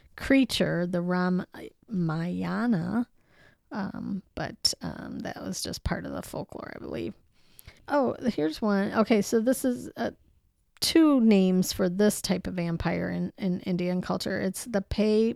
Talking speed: 145 wpm